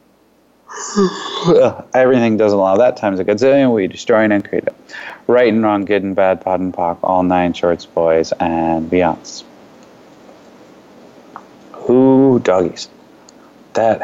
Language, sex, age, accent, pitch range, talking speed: English, male, 30-49, American, 95-115 Hz, 125 wpm